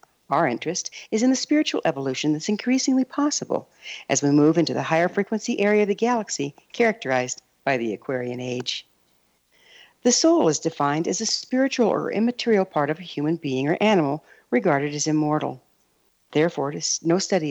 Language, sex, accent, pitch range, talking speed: English, female, American, 145-215 Hz, 165 wpm